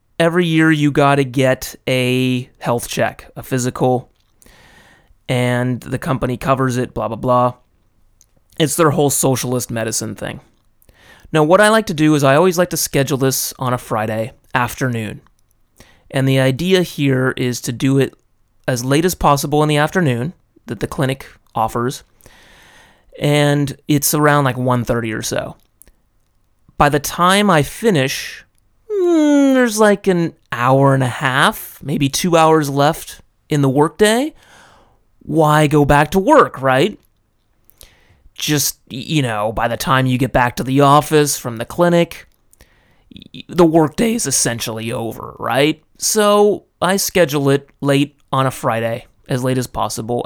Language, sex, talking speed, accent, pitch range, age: English, male, 150 wpm, American, 125-160 Hz, 30-49